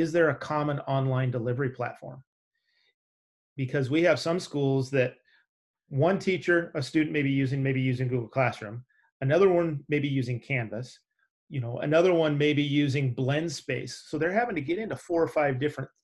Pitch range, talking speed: 130-150 Hz, 185 wpm